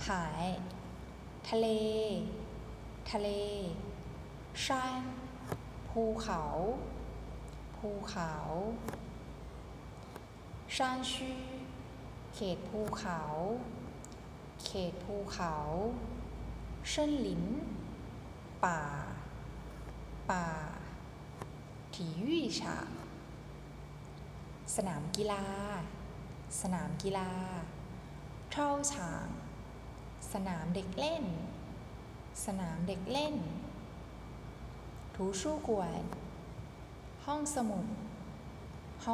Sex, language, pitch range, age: female, Thai, 180-220 Hz, 10-29